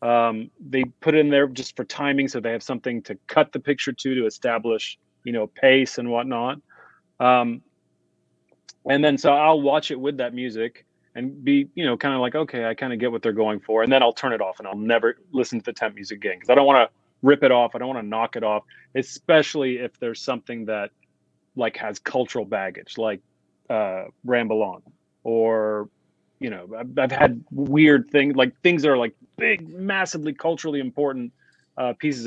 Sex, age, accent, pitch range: male, 30-49, American, 115-145 Hz